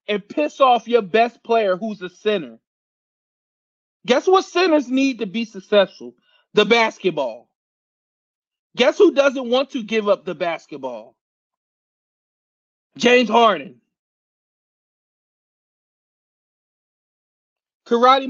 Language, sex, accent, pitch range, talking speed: English, male, American, 200-275 Hz, 100 wpm